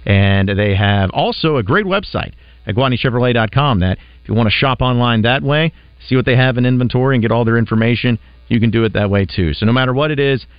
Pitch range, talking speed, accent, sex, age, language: 95-125 Hz, 240 wpm, American, male, 40-59, English